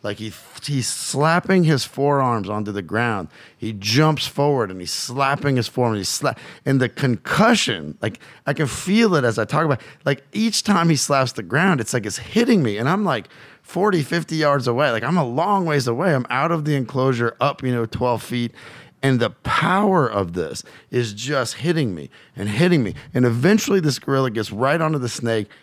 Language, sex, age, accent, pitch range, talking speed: English, male, 30-49, American, 120-170 Hz, 200 wpm